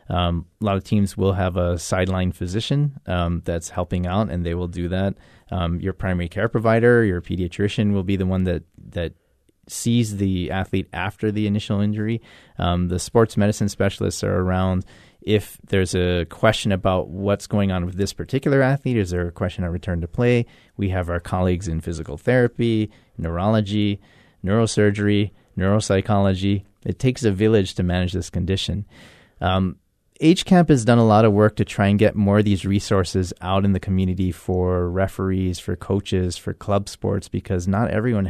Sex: male